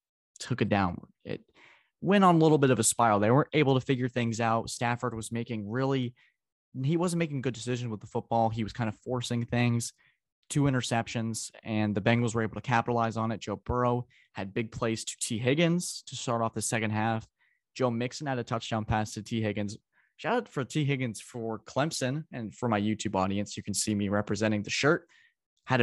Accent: American